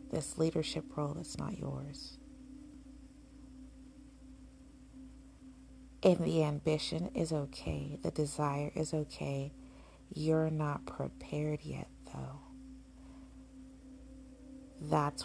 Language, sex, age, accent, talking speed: English, female, 40-59, American, 85 wpm